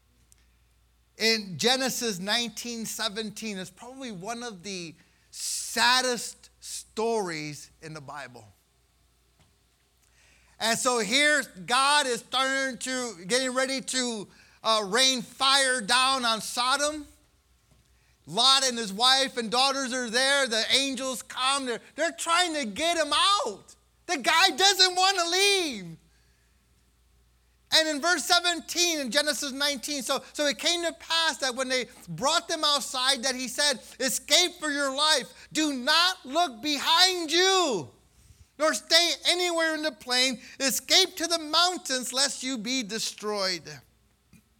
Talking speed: 135 wpm